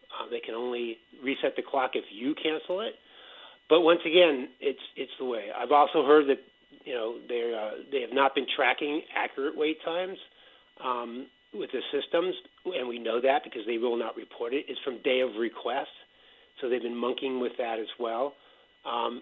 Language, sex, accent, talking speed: English, male, American, 190 wpm